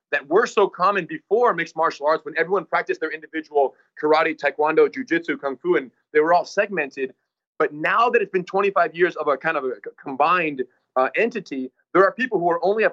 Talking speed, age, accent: 210 wpm, 30-49, American